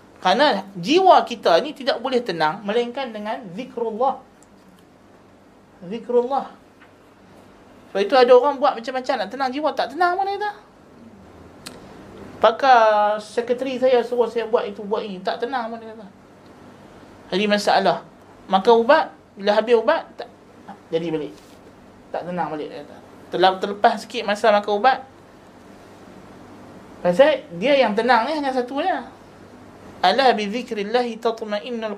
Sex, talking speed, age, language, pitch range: male, 135 wpm, 20-39, Malay, 190-250 Hz